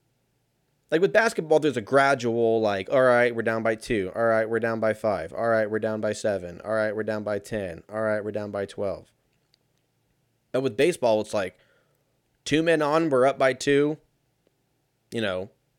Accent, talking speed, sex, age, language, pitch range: American, 195 wpm, male, 20-39, English, 110-140 Hz